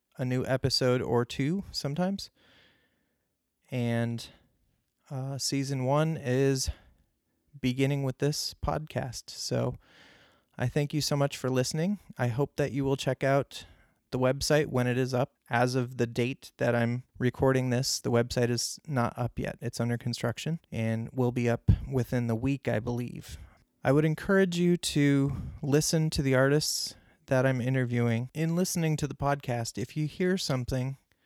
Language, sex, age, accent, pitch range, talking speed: English, male, 30-49, American, 120-140 Hz, 160 wpm